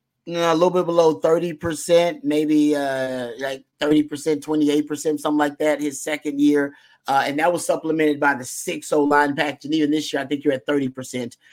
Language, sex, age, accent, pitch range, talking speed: English, male, 30-49, American, 140-155 Hz, 220 wpm